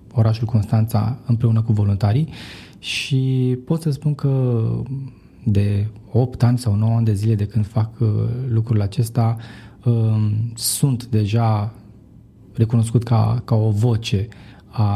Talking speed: 125 wpm